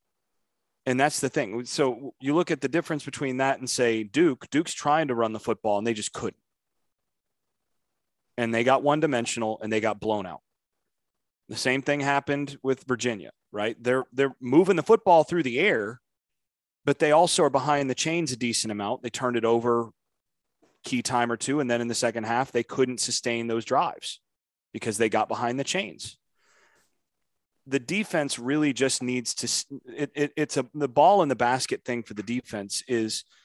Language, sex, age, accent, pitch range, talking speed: English, male, 30-49, American, 115-145 Hz, 190 wpm